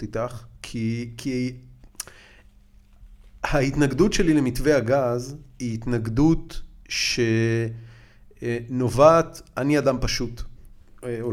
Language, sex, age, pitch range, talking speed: Hebrew, male, 30-49, 115-160 Hz, 75 wpm